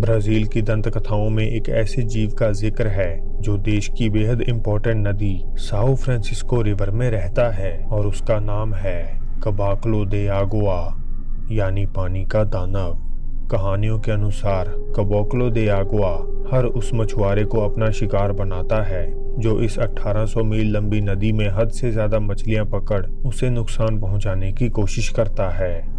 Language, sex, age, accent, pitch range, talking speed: Hindi, male, 30-49, native, 100-110 Hz, 150 wpm